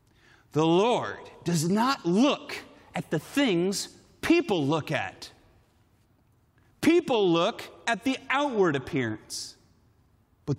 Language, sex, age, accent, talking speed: Dutch, male, 40-59, American, 100 wpm